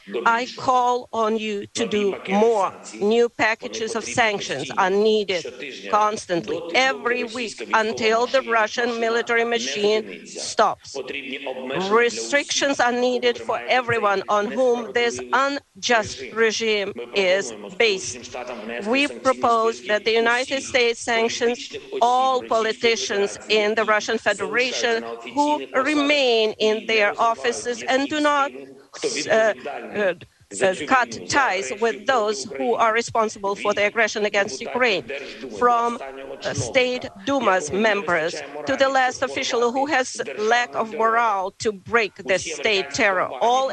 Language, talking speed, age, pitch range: English, 120 wpm, 40-59, 210-245 Hz